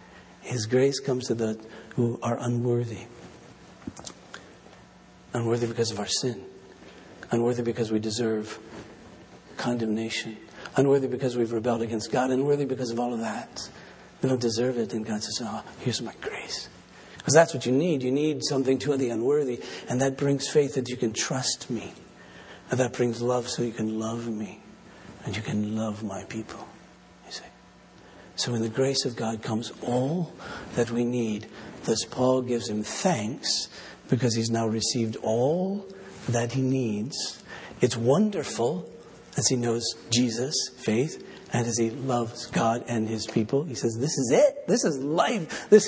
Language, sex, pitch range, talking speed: English, male, 115-135 Hz, 160 wpm